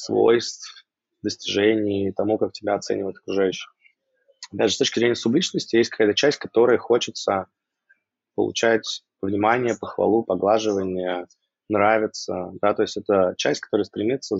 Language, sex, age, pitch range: Russian, male, 20-39, 100-115 Hz